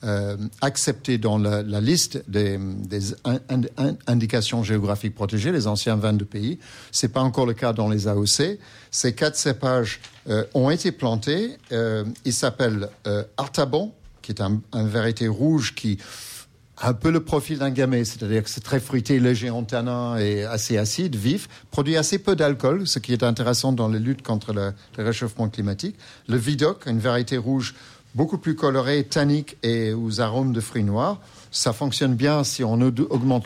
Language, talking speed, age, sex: French, 180 wpm, 50-69, male